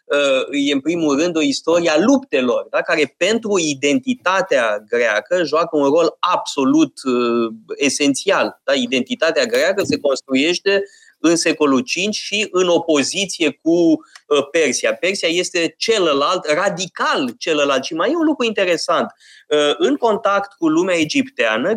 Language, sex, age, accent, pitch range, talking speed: Romanian, male, 20-39, native, 155-235 Hz, 140 wpm